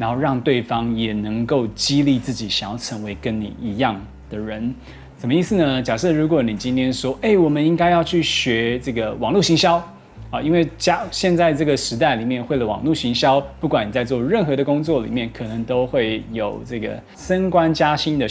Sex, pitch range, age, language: male, 115-155 Hz, 20-39, Chinese